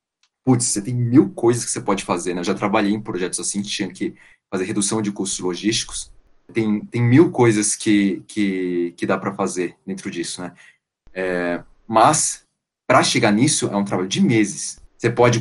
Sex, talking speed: male, 185 wpm